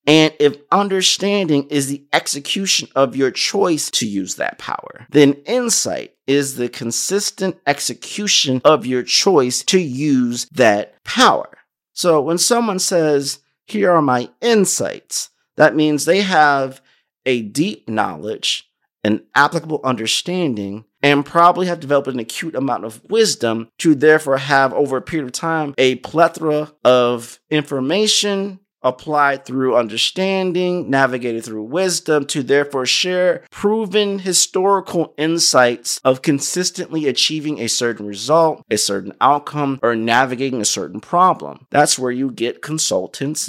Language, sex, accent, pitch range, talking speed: English, male, American, 130-175 Hz, 130 wpm